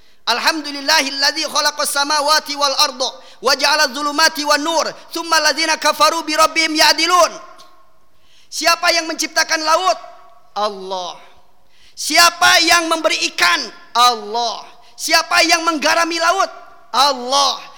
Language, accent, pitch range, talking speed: Indonesian, native, 220-345 Hz, 105 wpm